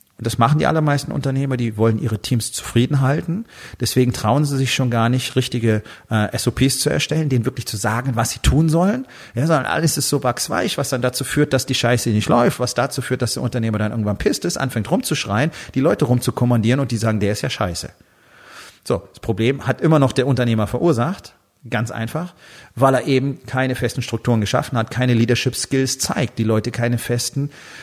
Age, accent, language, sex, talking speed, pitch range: 40-59, German, German, male, 205 wpm, 115-150 Hz